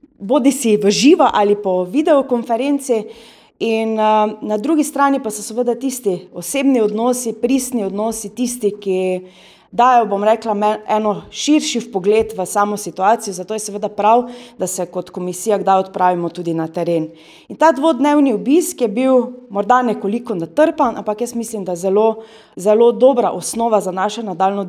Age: 30-49